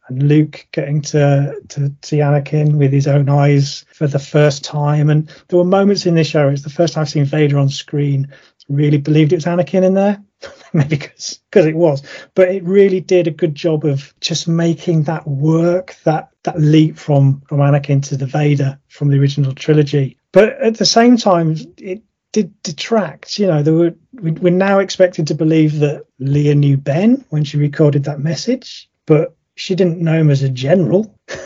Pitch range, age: 145-180 Hz, 30-49